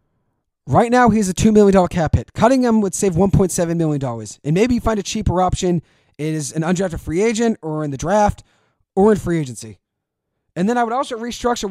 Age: 30-49